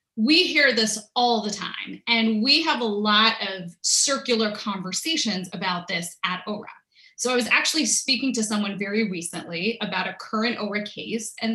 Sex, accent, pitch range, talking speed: female, American, 215-285 Hz, 170 wpm